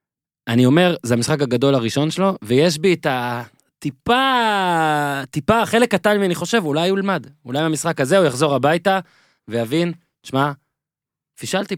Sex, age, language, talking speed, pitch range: male, 20-39, Hebrew, 150 wpm, 120-175 Hz